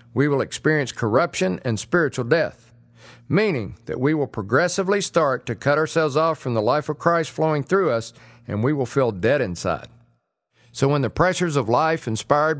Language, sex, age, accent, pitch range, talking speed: English, male, 50-69, American, 120-165 Hz, 180 wpm